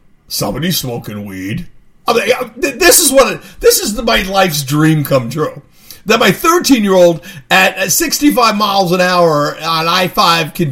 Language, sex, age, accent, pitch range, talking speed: English, male, 50-69, American, 135-215 Hz, 155 wpm